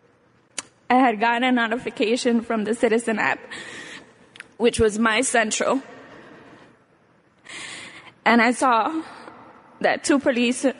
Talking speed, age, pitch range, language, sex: 105 wpm, 10-29, 225-270 Hz, English, female